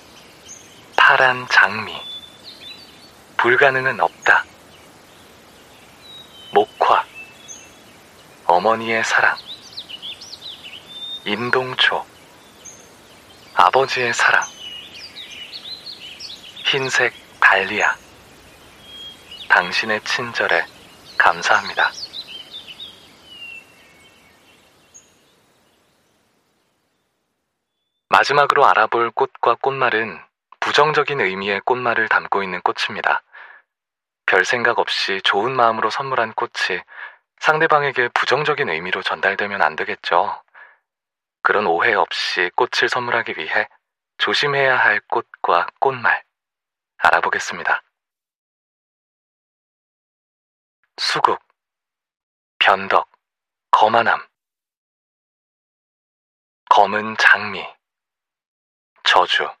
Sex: male